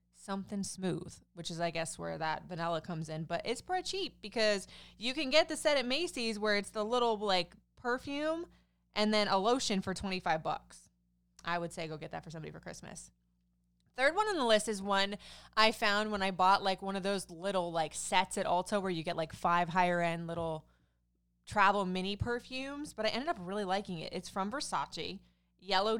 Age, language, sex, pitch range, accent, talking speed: 20-39, English, female, 170-230 Hz, American, 205 wpm